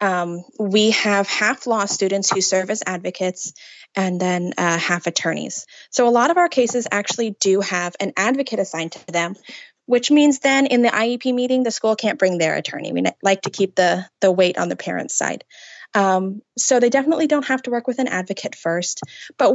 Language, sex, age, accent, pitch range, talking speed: English, female, 20-39, American, 180-235 Hz, 205 wpm